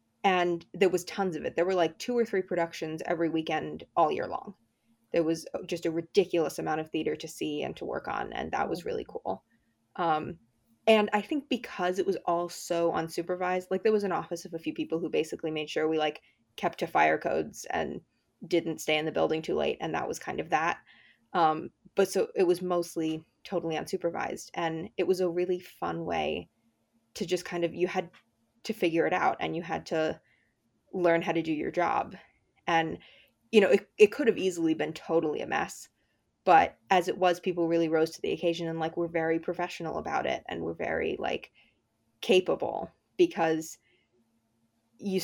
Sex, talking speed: female, 200 wpm